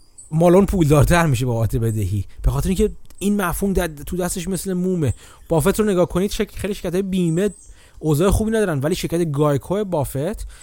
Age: 30-49